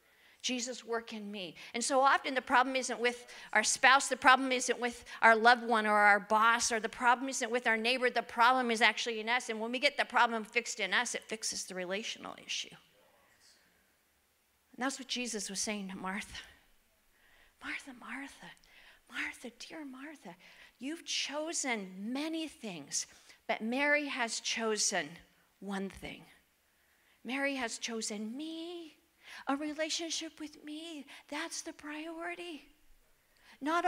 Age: 50-69